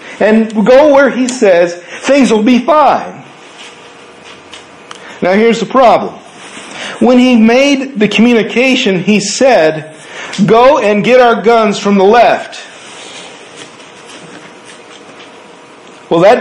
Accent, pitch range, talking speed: American, 165-225 Hz, 110 wpm